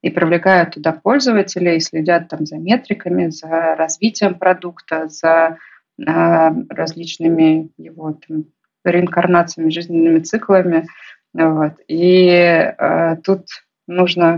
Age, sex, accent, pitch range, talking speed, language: 20-39, female, native, 165-180 Hz, 90 wpm, Russian